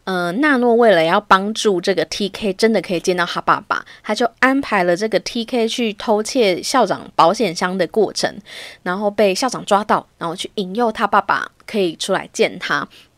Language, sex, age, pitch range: Chinese, female, 20-39, 185-240 Hz